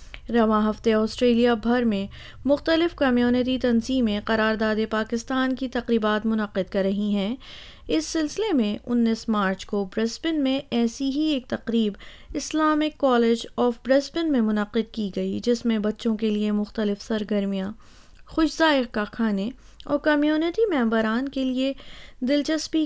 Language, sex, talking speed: Urdu, female, 140 wpm